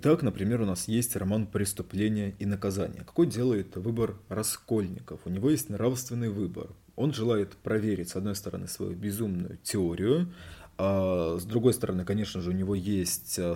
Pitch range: 95-115 Hz